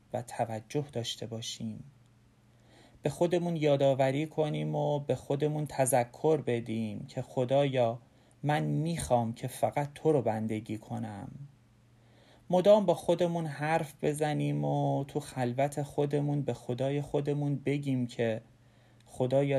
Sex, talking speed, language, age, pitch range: male, 115 wpm, Persian, 40-59, 120-140 Hz